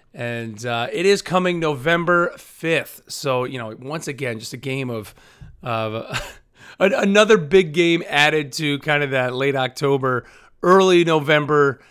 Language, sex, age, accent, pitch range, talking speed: English, male, 30-49, American, 120-155 Hz, 150 wpm